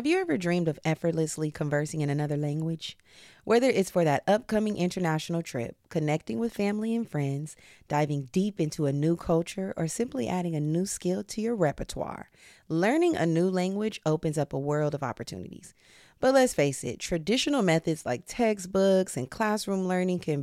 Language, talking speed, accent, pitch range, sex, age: English, 175 wpm, American, 145-195 Hz, female, 30-49